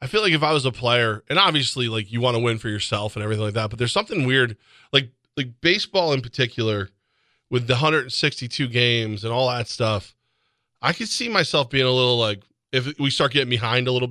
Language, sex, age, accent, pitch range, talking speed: English, male, 20-39, American, 115-140 Hz, 225 wpm